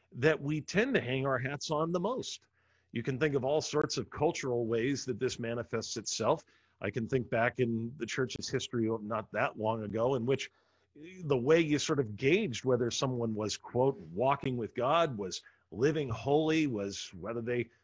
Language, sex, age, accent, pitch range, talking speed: English, male, 40-59, American, 120-150 Hz, 190 wpm